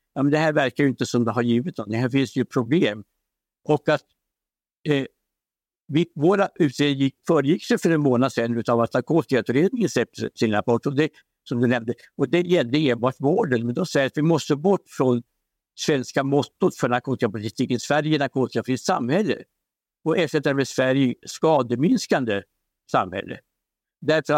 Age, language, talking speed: 60-79, Swedish, 160 wpm